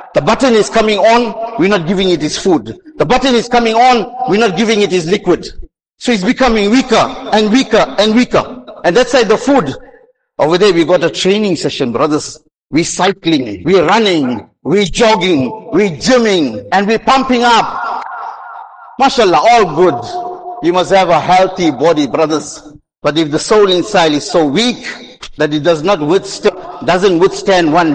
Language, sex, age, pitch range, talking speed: English, male, 50-69, 195-250 Hz, 170 wpm